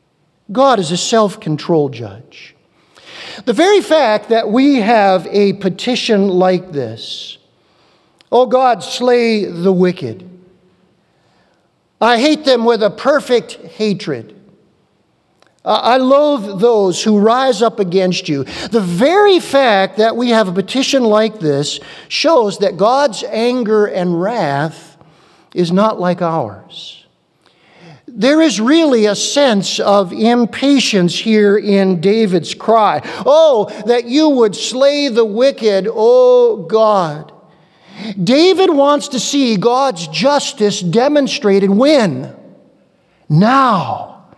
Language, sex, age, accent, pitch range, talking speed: English, male, 50-69, American, 185-255 Hz, 115 wpm